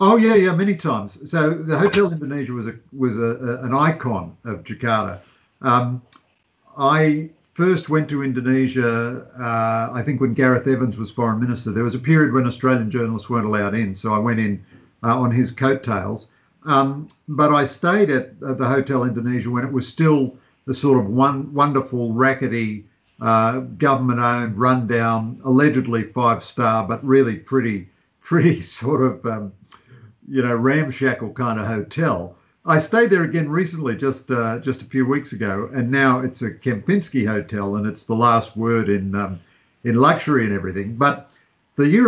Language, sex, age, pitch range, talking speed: English, male, 50-69, 115-140 Hz, 170 wpm